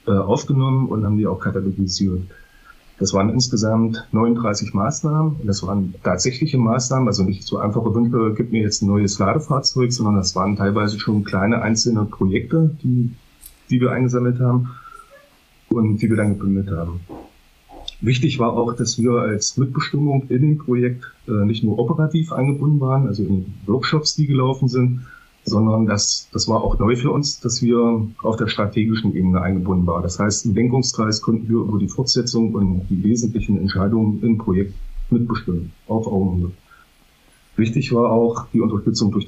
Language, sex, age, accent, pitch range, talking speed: German, male, 30-49, German, 100-125 Hz, 165 wpm